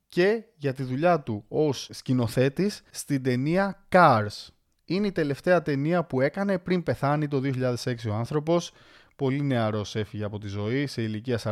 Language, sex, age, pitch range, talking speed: Greek, male, 20-39, 130-180 Hz, 155 wpm